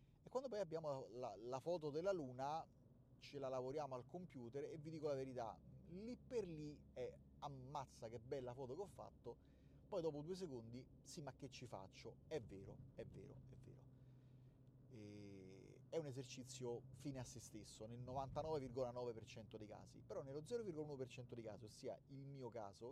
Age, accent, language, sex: 30-49, native, Italian, male